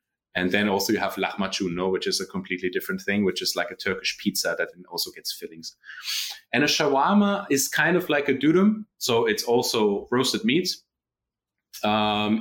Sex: male